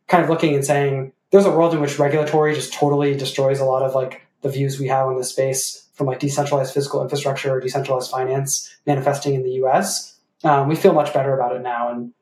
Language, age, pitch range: English, 20-39, 130-155 Hz